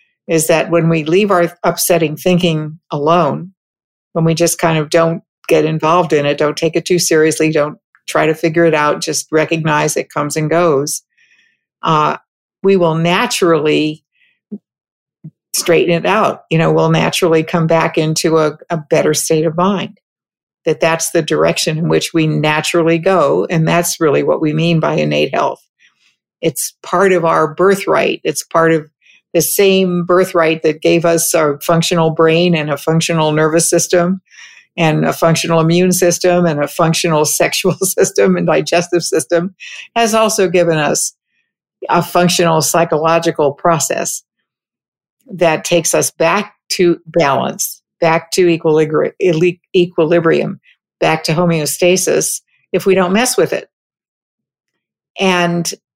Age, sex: 50-69, female